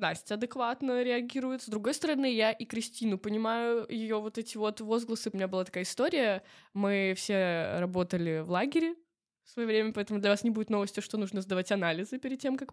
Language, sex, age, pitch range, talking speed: Russian, female, 20-39, 195-235 Hz, 195 wpm